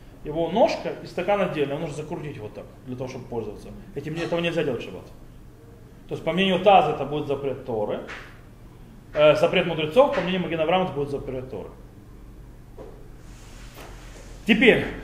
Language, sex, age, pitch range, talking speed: Russian, male, 30-49, 145-210 Hz, 150 wpm